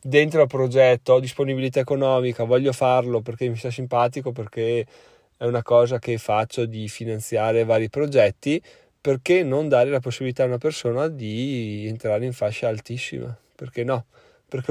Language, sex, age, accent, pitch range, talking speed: Italian, male, 20-39, native, 110-130 Hz, 155 wpm